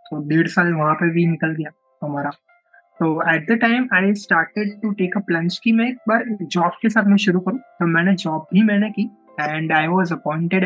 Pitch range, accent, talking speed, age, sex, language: 165-205 Hz, native, 90 wpm, 20-39, male, Hindi